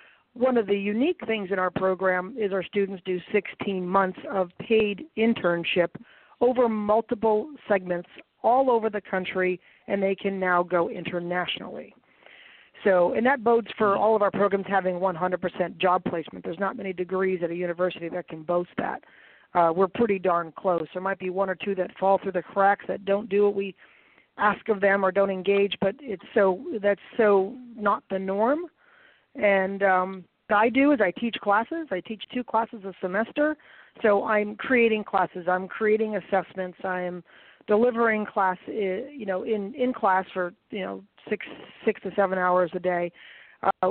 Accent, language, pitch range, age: American, English, 185-225 Hz, 40-59